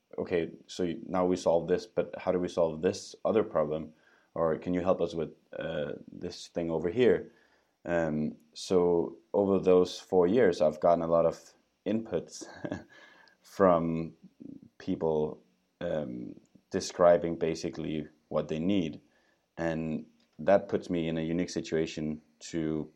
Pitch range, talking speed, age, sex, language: 80-90 Hz, 140 wpm, 20-39, male, English